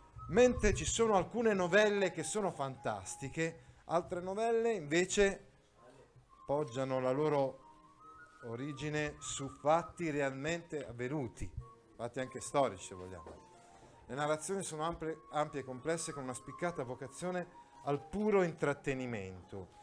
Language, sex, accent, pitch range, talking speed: Italian, male, native, 115-170 Hz, 115 wpm